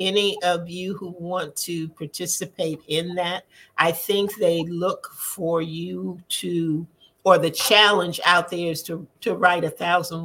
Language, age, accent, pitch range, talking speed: English, 50-69, American, 150-175 Hz, 160 wpm